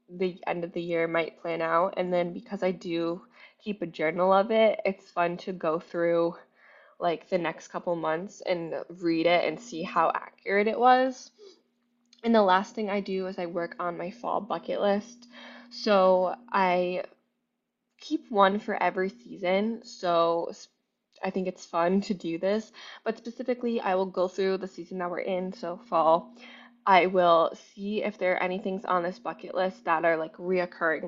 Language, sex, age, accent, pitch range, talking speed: English, female, 20-39, American, 175-210 Hz, 185 wpm